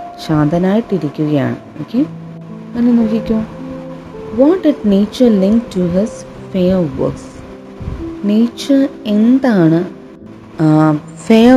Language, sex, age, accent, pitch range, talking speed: Malayalam, female, 30-49, native, 150-210 Hz, 80 wpm